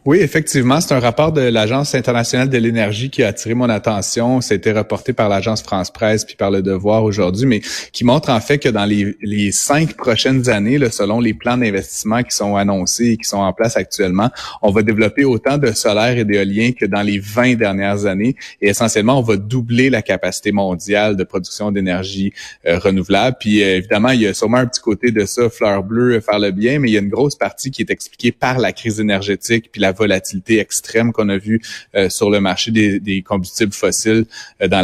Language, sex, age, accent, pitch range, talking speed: French, male, 30-49, Canadian, 100-120 Hz, 215 wpm